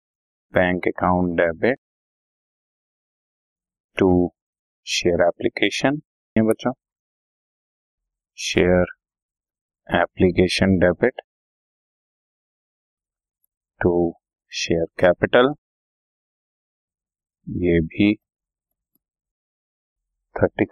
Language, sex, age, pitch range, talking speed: Hindi, male, 50-69, 85-105 Hz, 45 wpm